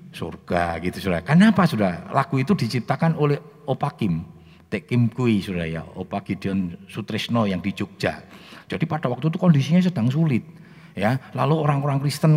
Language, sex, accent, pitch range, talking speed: Indonesian, male, native, 90-130 Hz, 140 wpm